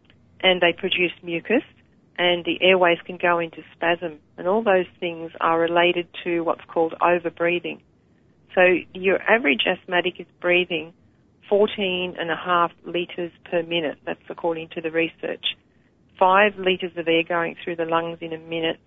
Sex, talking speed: female, 160 wpm